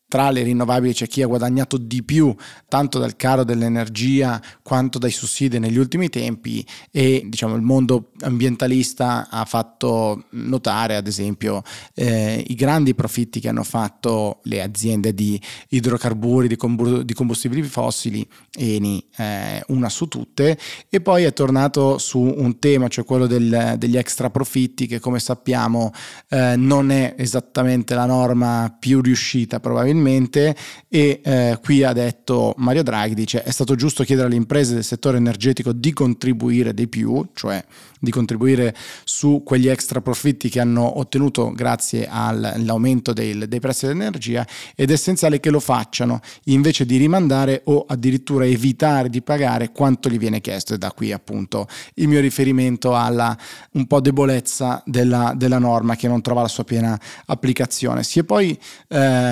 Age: 20-39